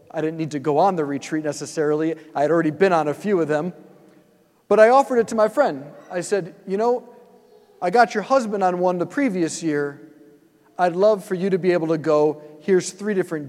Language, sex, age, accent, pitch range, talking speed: English, male, 40-59, American, 165-225 Hz, 220 wpm